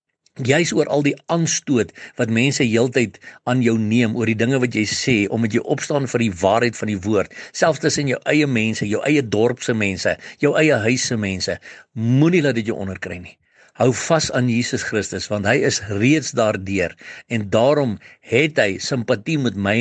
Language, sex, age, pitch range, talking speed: English, male, 60-79, 105-140 Hz, 205 wpm